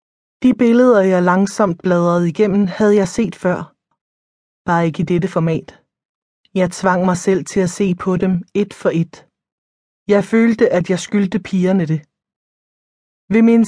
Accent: native